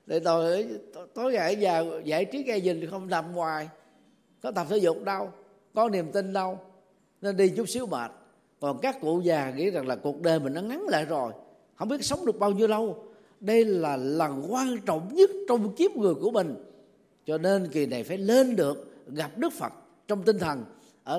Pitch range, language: 150-215 Hz, Vietnamese